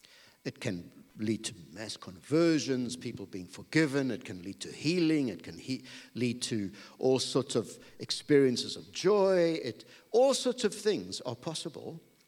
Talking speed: 145 wpm